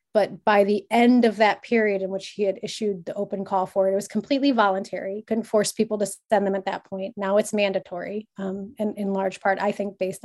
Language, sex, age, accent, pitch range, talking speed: English, female, 30-49, American, 195-230 Hz, 240 wpm